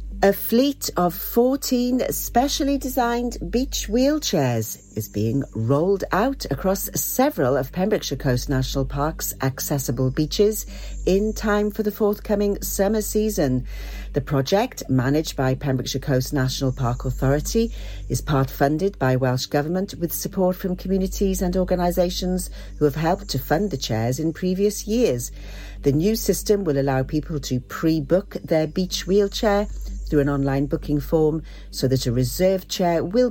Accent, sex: British, female